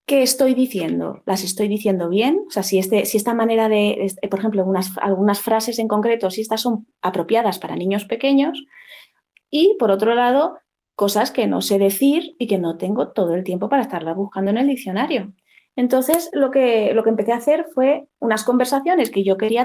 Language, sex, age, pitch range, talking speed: Spanish, female, 20-39, 195-255 Hz, 190 wpm